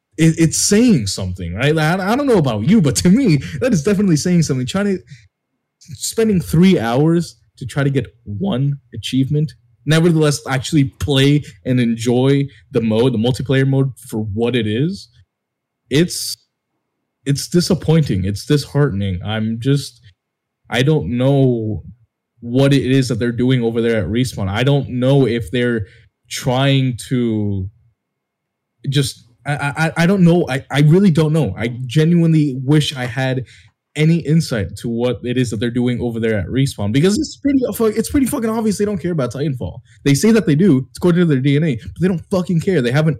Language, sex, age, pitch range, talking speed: English, male, 20-39, 120-155 Hz, 175 wpm